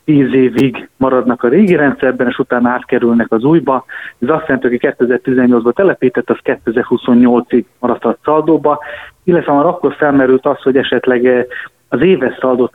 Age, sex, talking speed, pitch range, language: 30-49, male, 150 wpm, 125-140 Hz, Hungarian